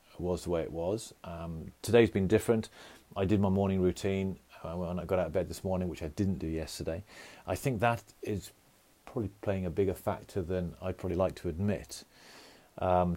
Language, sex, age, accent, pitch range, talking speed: English, male, 40-59, British, 90-105 Hz, 195 wpm